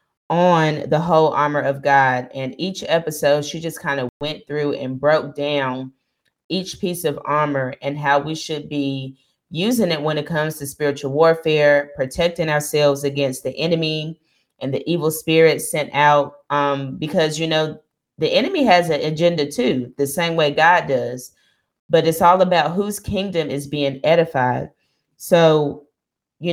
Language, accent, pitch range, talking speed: English, American, 140-165 Hz, 165 wpm